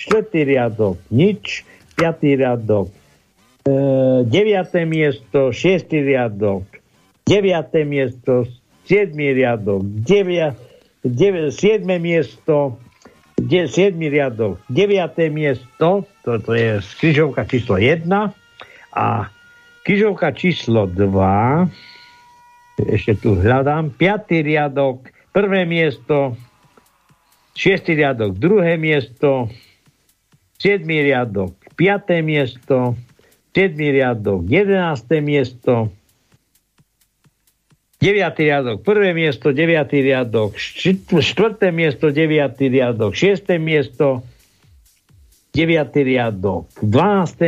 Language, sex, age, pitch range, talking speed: Slovak, male, 60-79, 120-165 Hz, 80 wpm